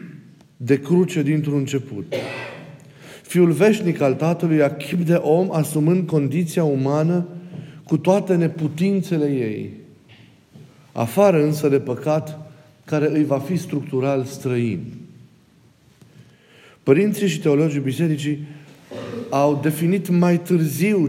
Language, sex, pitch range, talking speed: Romanian, male, 140-170 Hz, 100 wpm